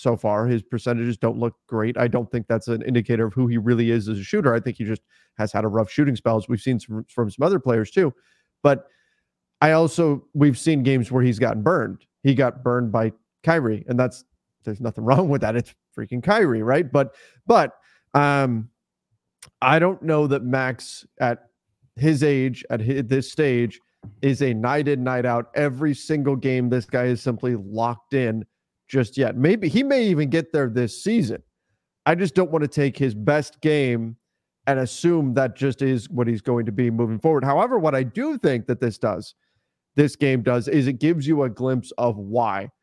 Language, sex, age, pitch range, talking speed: English, male, 30-49, 120-145 Hz, 200 wpm